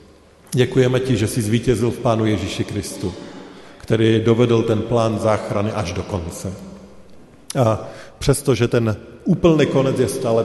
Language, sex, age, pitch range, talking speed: Slovak, male, 50-69, 100-115 Hz, 145 wpm